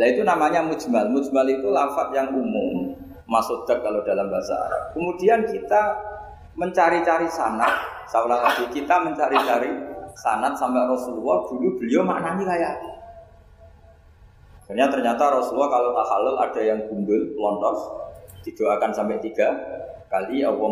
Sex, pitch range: male, 115-175 Hz